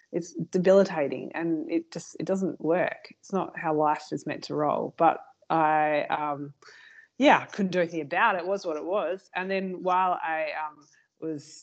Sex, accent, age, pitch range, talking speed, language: female, Australian, 20-39, 150-185 Hz, 185 wpm, English